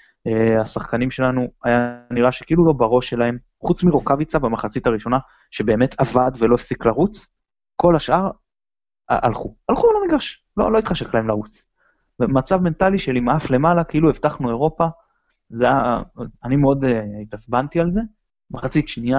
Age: 20-39